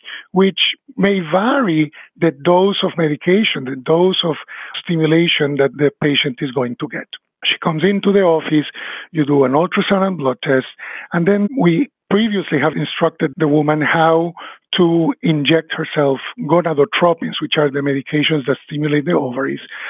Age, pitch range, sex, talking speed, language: 50-69, 150-195 Hz, male, 155 wpm, English